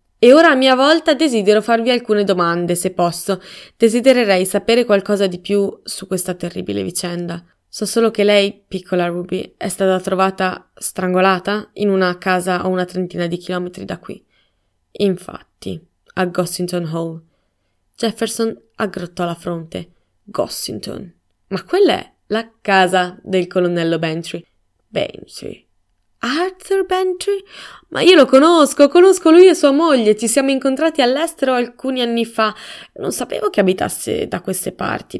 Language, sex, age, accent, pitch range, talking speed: Italian, female, 20-39, native, 180-230 Hz, 140 wpm